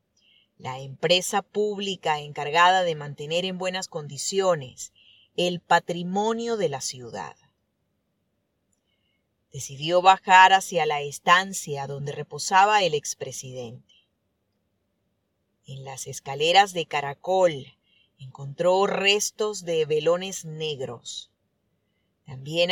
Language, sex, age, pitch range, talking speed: Spanish, female, 30-49, 130-185 Hz, 90 wpm